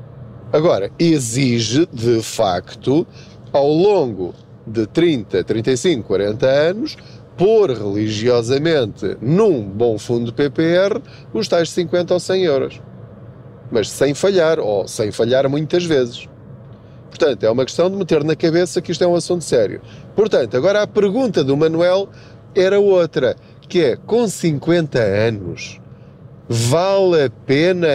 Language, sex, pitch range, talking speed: Portuguese, male, 125-175 Hz, 135 wpm